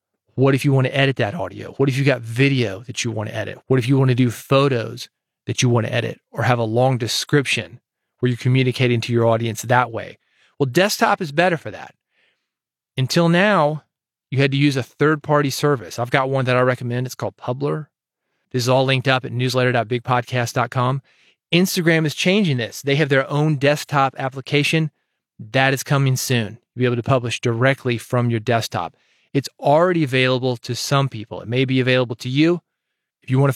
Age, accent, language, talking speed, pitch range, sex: 30-49, American, English, 200 wpm, 120-140 Hz, male